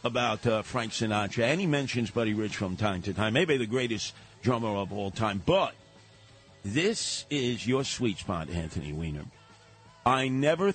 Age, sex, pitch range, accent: 50-69, male, 105-125 Hz, American